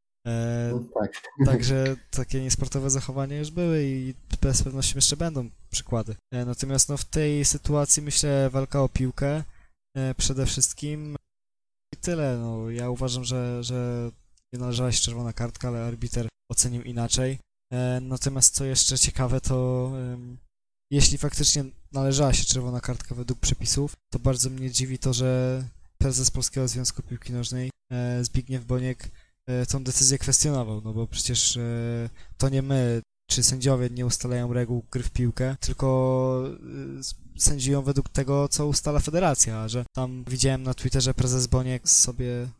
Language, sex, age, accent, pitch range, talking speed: Polish, male, 20-39, native, 120-135 Hz, 150 wpm